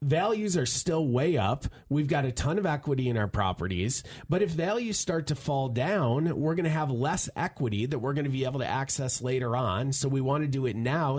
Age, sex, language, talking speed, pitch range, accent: 30-49, male, English, 235 wpm, 120-160 Hz, American